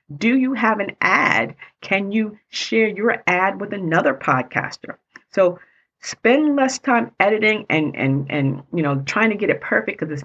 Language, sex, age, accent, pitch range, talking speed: English, female, 40-59, American, 155-230 Hz, 175 wpm